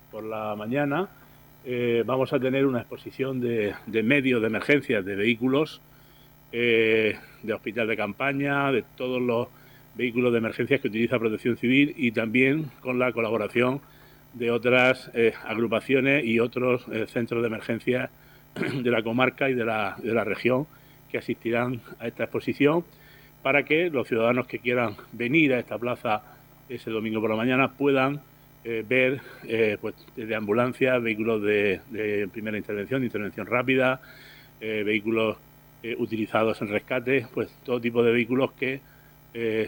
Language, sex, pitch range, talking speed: Spanish, male, 110-135 Hz, 155 wpm